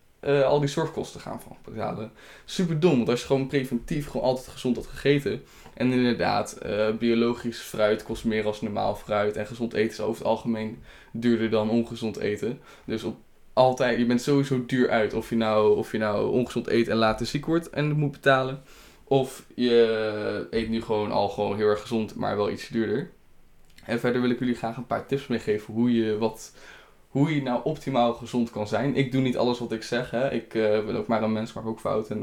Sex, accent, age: male, Dutch, 10-29